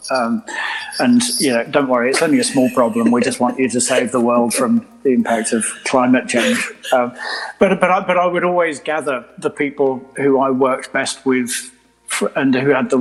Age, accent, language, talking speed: 40-59, British, English, 210 wpm